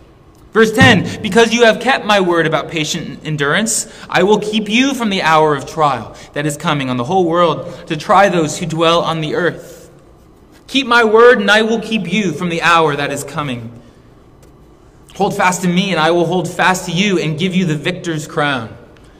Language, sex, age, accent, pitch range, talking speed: English, male, 20-39, American, 140-180 Hz, 205 wpm